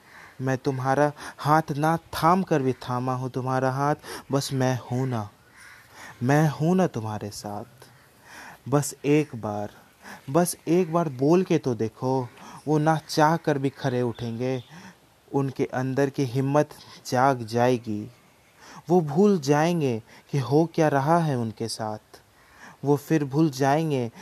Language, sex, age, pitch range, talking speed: Hindi, male, 20-39, 120-155 Hz, 140 wpm